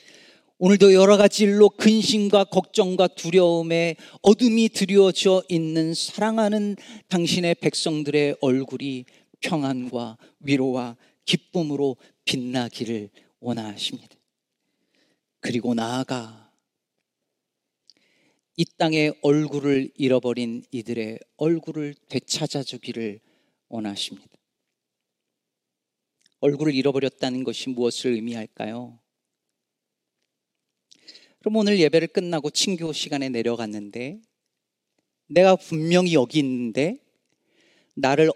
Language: Korean